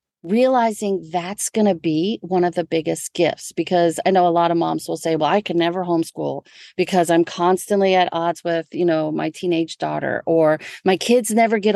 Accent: American